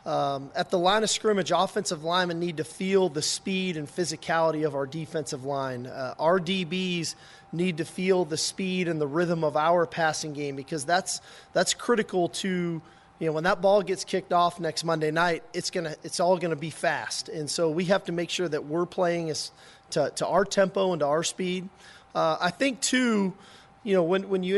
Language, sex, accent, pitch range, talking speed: English, male, American, 155-180 Hz, 205 wpm